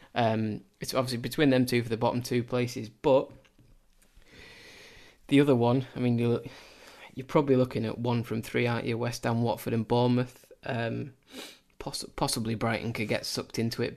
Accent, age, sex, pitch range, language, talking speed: British, 20-39, male, 115-125 Hz, English, 170 wpm